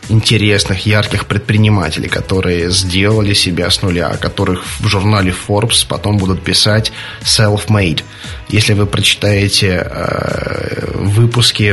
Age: 20-39